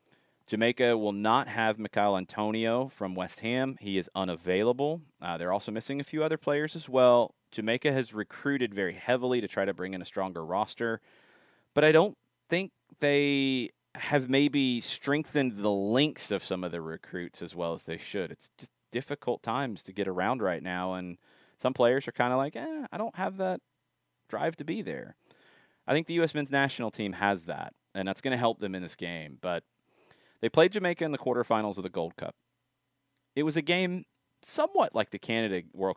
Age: 30-49